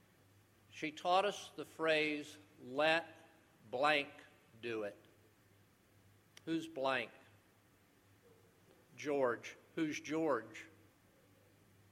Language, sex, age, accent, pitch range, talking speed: English, male, 50-69, American, 100-155 Hz, 70 wpm